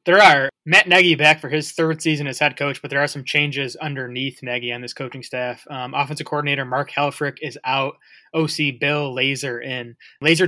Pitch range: 130-155 Hz